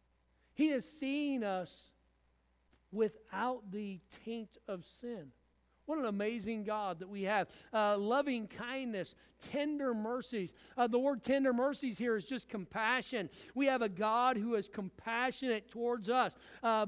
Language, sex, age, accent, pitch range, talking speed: English, male, 50-69, American, 170-250 Hz, 140 wpm